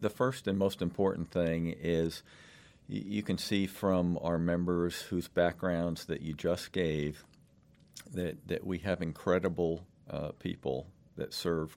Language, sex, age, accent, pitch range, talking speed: English, male, 50-69, American, 80-95 Hz, 145 wpm